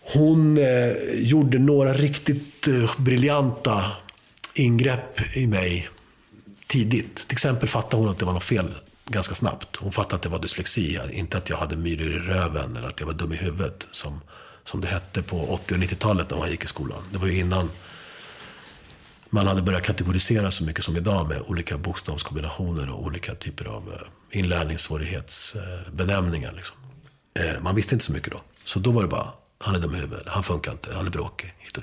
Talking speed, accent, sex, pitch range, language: 190 wpm, Swedish, male, 85-110 Hz, English